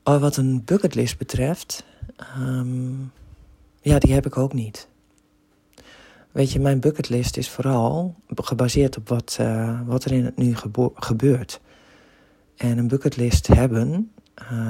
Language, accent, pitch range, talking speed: Dutch, Dutch, 115-135 Hz, 125 wpm